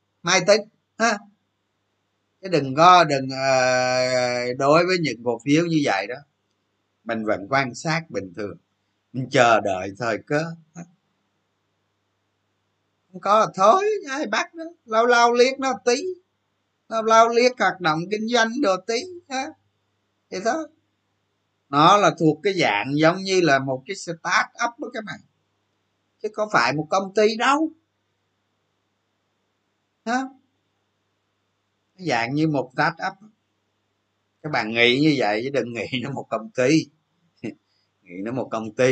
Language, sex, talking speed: Vietnamese, male, 140 wpm